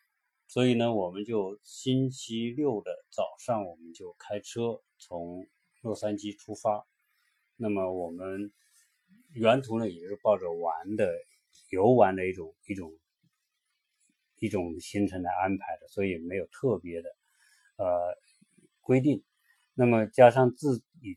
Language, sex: Chinese, male